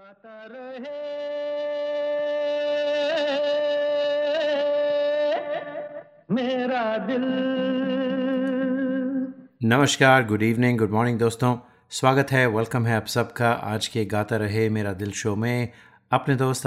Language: Hindi